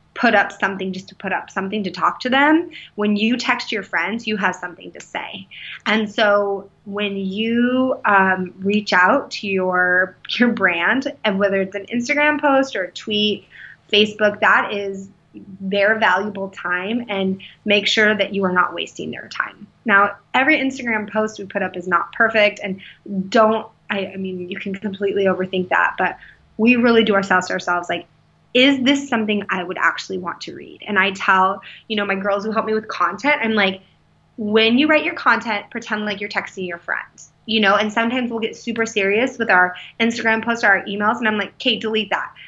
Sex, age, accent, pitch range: female, 20-39, American, 190-225 Hz